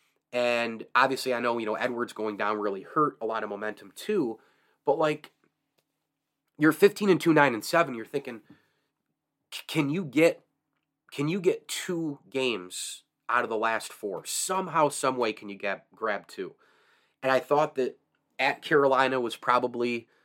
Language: English